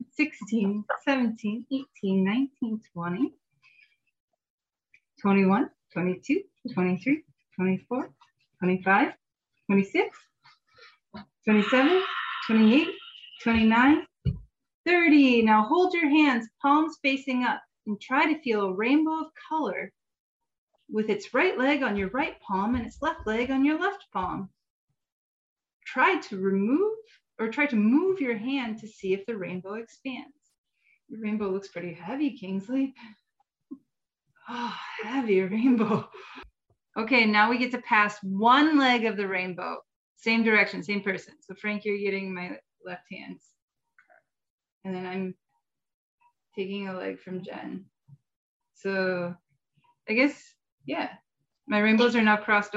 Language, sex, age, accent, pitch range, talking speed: English, female, 30-49, American, 195-290 Hz, 125 wpm